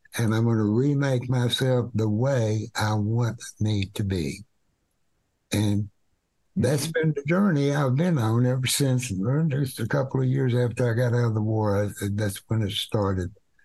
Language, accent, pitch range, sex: English, American, 105-130 Hz, male